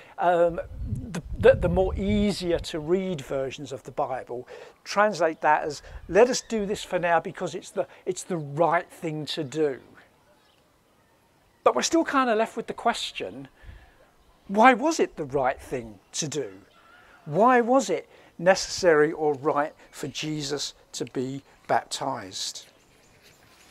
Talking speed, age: 140 wpm, 50-69